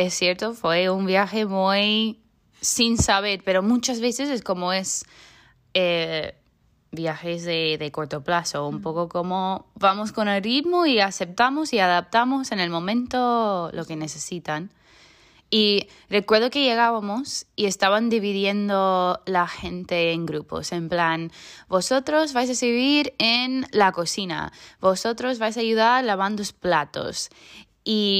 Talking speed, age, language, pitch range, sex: 140 wpm, 20-39, Spanish, 170-215 Hz, female